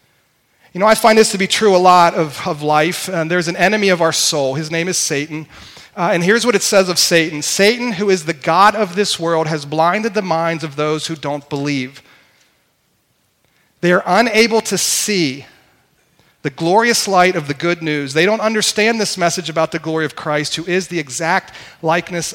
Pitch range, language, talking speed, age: 150-190 Hz, English, 205 wpm, 40-59